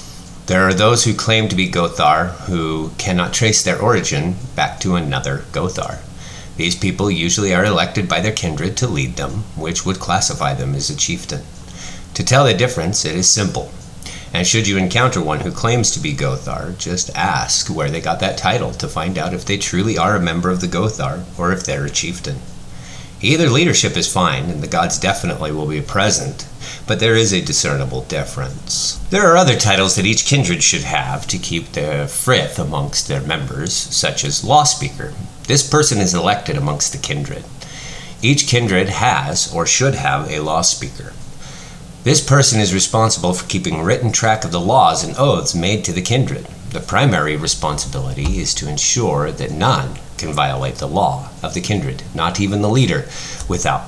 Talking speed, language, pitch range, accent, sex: 185 wpm, English, 85-125 Hz, American, male